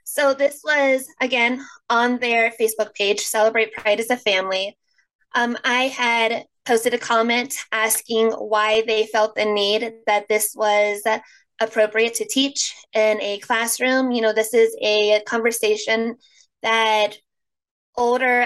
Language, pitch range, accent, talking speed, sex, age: English, 215-240 Hz, American, 135 wpm, female, 20-39